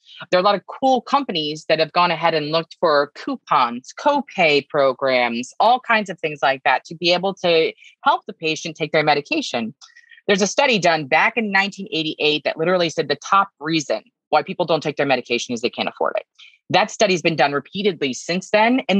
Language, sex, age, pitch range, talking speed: English, female, 20-39, 145-195 Hz, 210 wpm